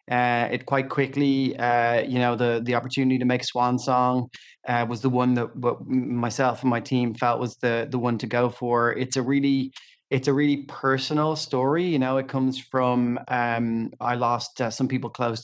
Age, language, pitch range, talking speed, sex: 30-49, English, 125-135 Hz, 200 wpm, male